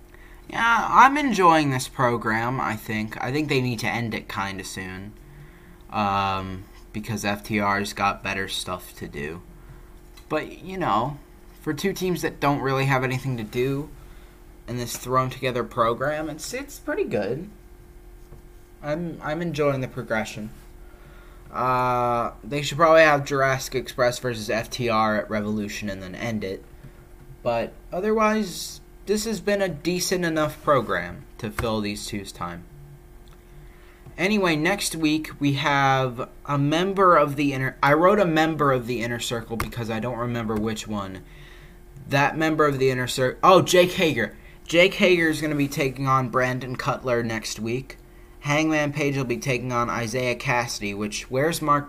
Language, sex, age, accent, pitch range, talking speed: English, male, 20-39, American, 110-150 Hz, 155 wpm